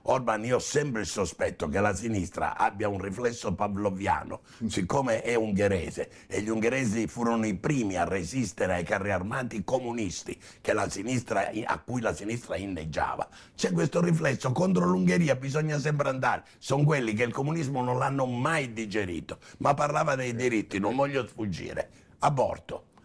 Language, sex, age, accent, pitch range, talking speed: Italian, male, 60-79, native, 105-140 Hz, 150 wpm